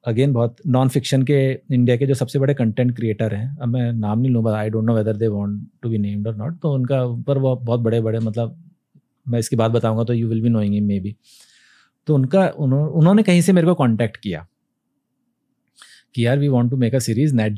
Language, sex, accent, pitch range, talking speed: Hindi, male, native, 115-155 Hz, 225 wpm